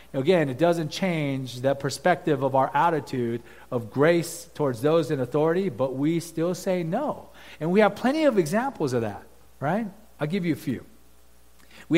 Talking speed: 175 wpm